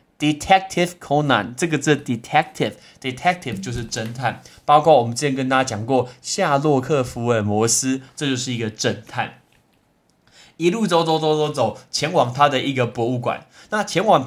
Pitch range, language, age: 120-160 Hz, Chinese, 20-39